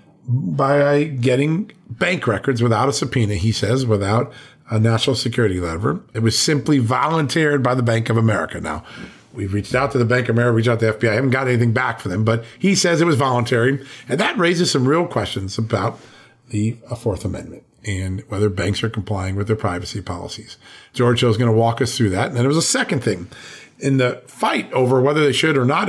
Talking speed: 220 wpm